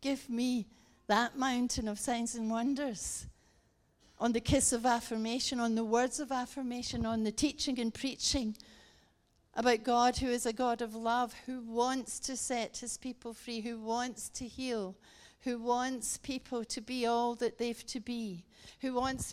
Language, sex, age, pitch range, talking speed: English, female, 60-79, 225-255 Hz, 170 wpm